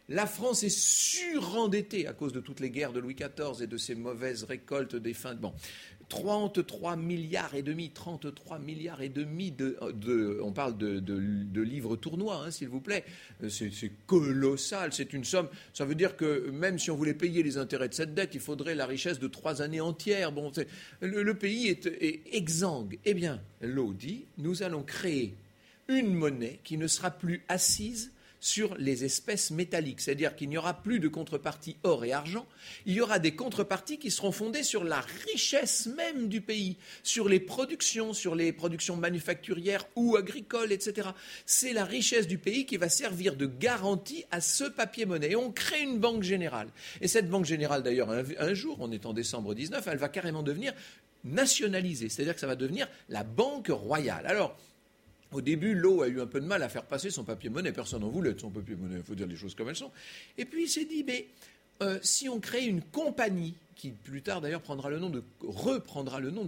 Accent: French